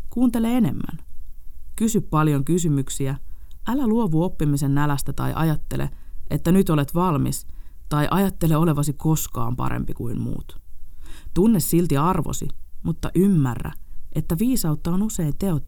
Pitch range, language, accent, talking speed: 130-175 Hz, Finnish, native, 125 wpm